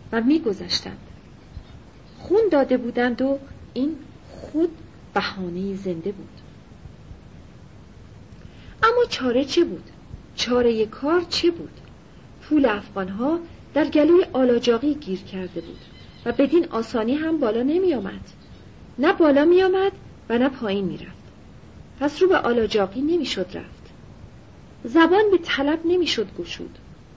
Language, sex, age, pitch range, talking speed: Persian, female, 40-59, 220-325 Hz, 110 wpm